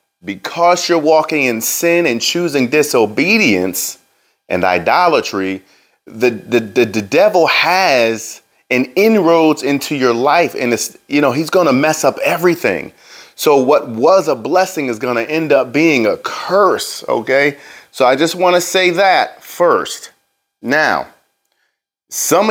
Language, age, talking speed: English, 30-49, 145 wpm